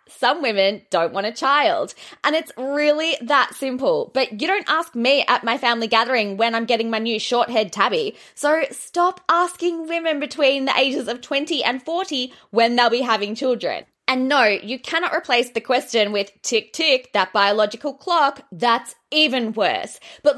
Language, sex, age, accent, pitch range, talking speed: English, female, 20-39, Australian, 215-315 Hz, 180 wpm